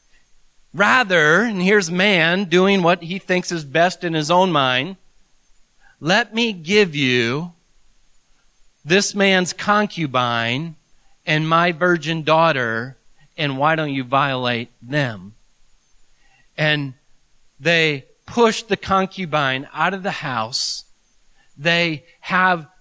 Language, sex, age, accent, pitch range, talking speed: English, male, 40-59, American, 125-175 Hz, 110 wpm